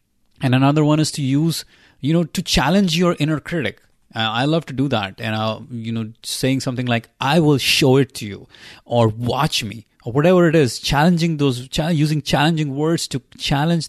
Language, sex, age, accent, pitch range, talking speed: English, male, 30-49, Indian, 110-145 Hz, 195 wpm